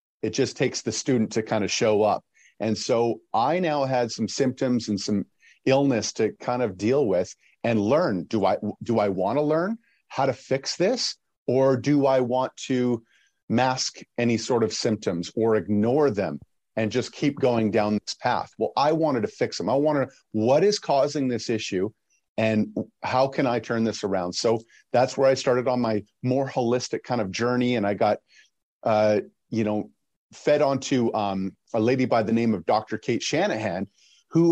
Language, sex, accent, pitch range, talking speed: English, male, American, 110-135 Hz, 190 wpm